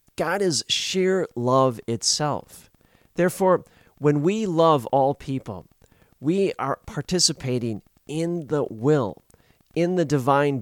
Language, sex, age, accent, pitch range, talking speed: English, male, 40-59, American, 120-155 Hz, 115 wpm